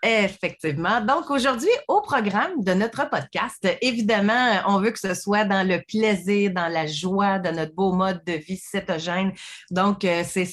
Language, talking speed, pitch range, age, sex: French, 165 wpm, 185-225 Hz, 30-49, female